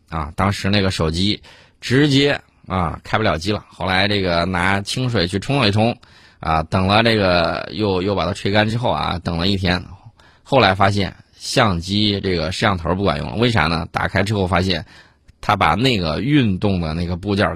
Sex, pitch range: male, 90-120 Hz